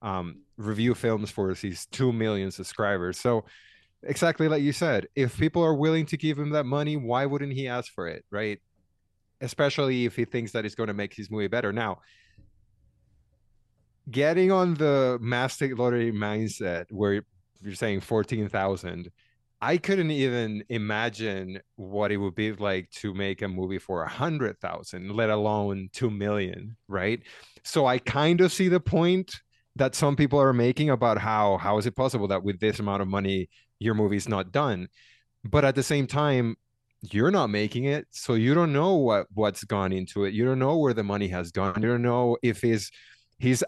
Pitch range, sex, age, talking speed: 105-130 Hz, male, 30-49, 185 wpm